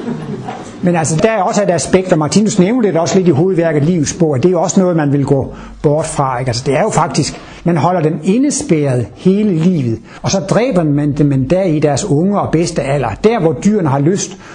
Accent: native